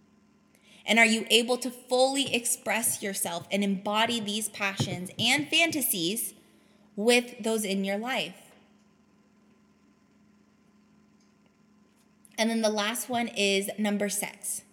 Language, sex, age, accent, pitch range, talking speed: English, female, 20-39, American, 195-220 Hz, 110 wpm